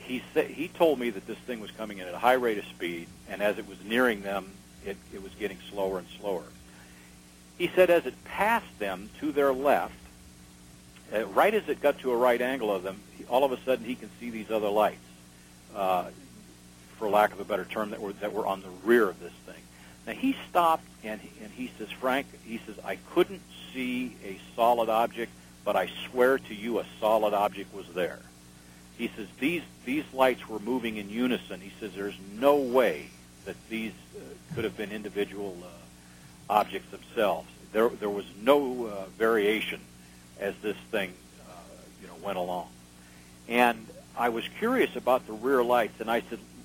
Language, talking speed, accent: English, 190 wpm, American